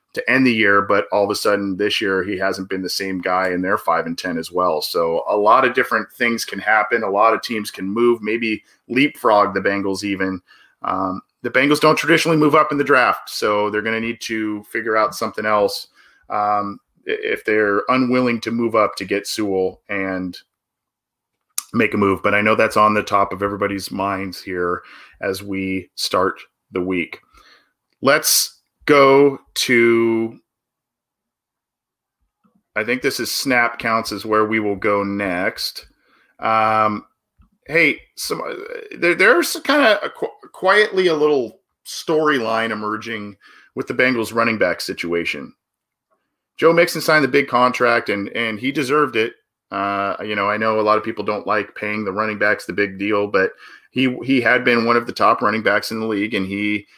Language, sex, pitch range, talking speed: English, male, 100-125 Hz, 180 wpm